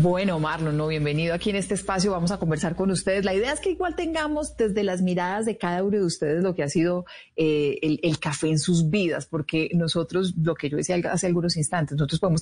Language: Spanish